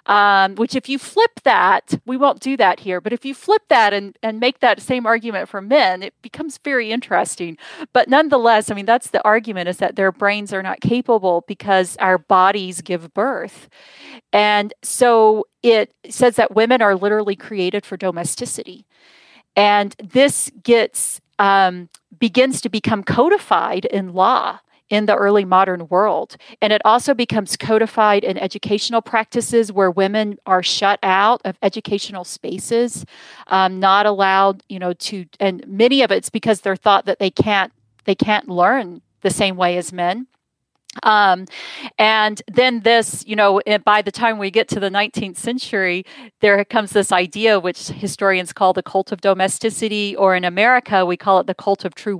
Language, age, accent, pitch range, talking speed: English, 40-59, American, 190-230 Hz, 170 wpm